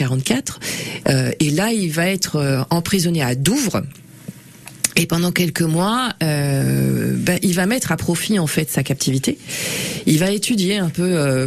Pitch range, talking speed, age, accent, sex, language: 140-180 Hz, 160 wpm, 40-59, French, female, French